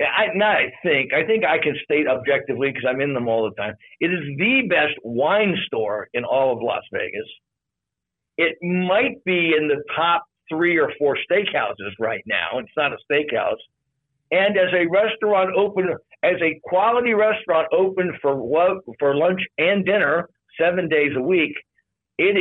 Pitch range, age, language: 130-180 Hz, 60-79, English